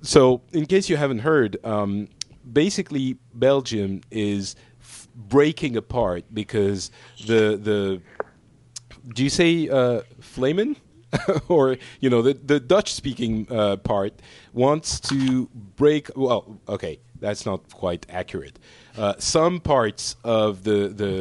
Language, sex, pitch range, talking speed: English, male, 100-130 Hz, 125 wpm